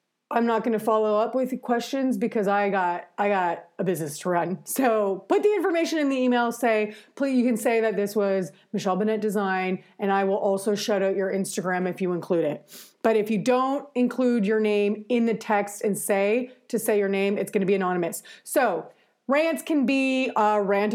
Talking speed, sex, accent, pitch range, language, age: 210 wpm, female, American, 195-245 Hz, English, 30-49